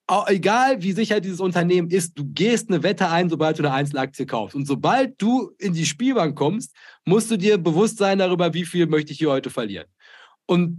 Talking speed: 205 wpm